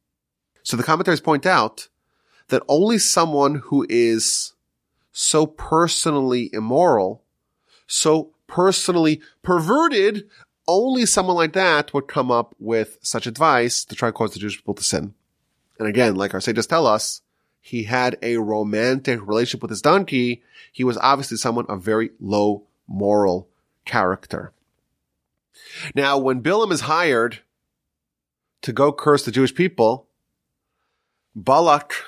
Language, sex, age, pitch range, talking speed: English, male, 30-49, 110-165 Hz, 135 wpm